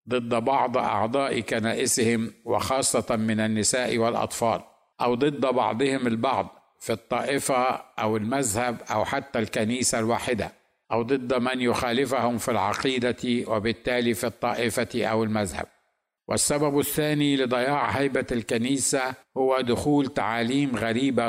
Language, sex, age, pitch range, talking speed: Arabic, male, 50-69, 115-130 Hz, 115 wpm